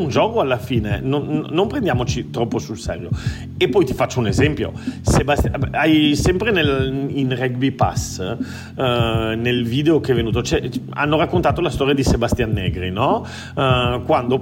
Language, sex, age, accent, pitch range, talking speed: Italian, male, 40-59, native, 115-140 Hz, 165 wpm